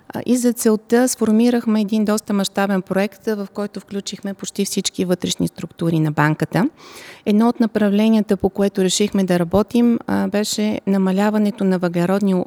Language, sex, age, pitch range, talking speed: Bulgarian, female, 30-49, 185-215 Hz, 140 wpm